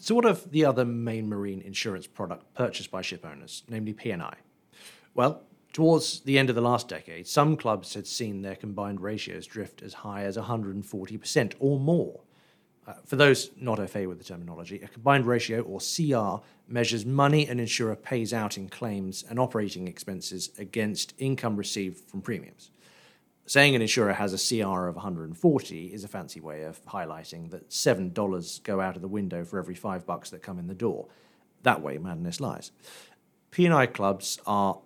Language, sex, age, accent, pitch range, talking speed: English, male, 40-59, British, 95-130 Hz, 180 wpm